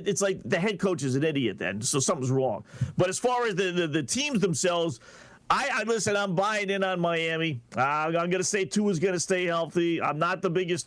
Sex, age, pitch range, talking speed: male, 40-59, 150-190 Hz, 245 wpm